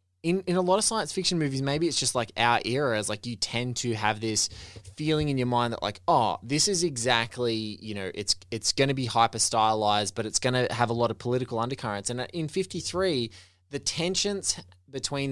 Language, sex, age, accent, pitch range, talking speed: English, male, 20-39, Australian, 105-135 Hz, 220 wpm